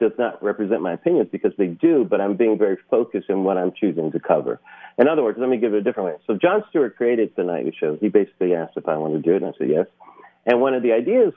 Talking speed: 285 wpm